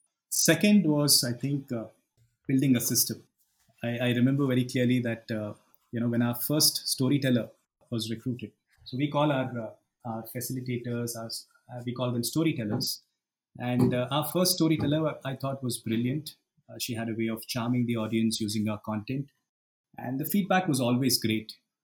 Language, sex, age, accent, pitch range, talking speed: English, male, 30-49, Indian, 115-145 Hz, 175 wpm